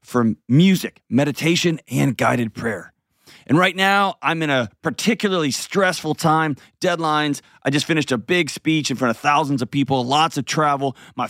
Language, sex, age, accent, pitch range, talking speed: English, male, 30-49, American, 125-155 Hz, 170 wpm